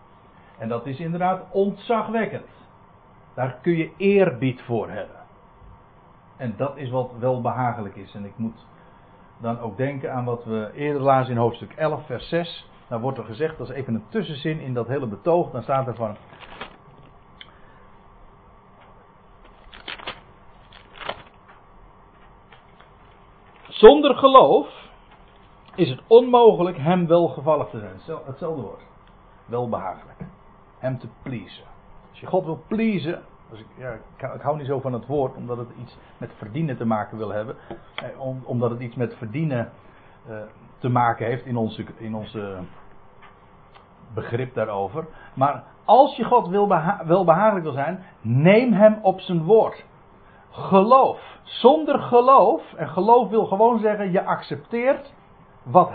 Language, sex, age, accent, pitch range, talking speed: Dutch, male, 60-79, Dutch, 115-180 Hz, 145 wpm